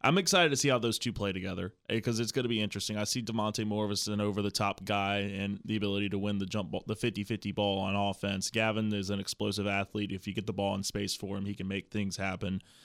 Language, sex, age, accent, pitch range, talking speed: English, male, 20-39, American, 100-115 Hz, 245 wpm